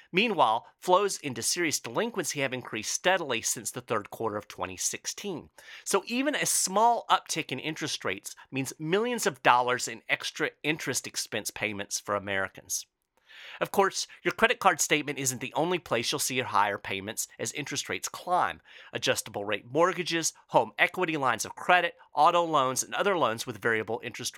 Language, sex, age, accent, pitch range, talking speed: English, male, 40-59, American, 115-175 Hz, 165 wpm